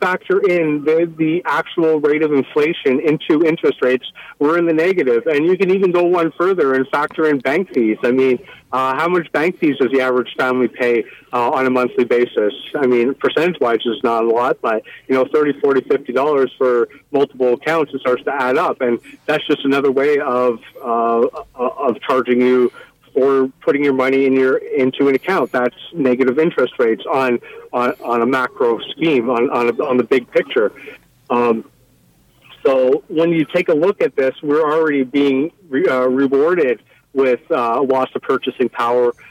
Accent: American